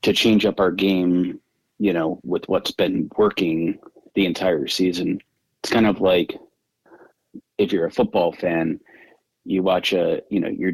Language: English